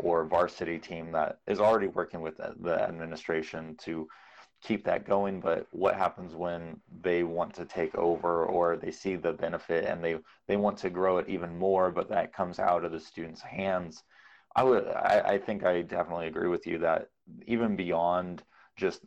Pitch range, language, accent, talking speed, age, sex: 85-95 Hz, English, American, 185 wpm, 30-49, male